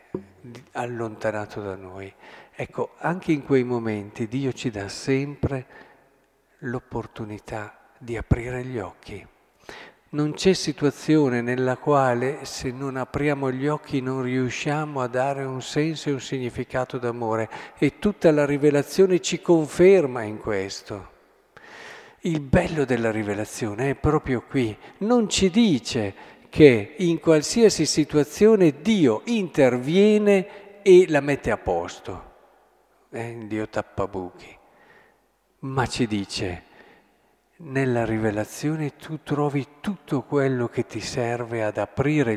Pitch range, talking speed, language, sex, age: 120-150 Hz, 120 wpm, Italian, male, 50-69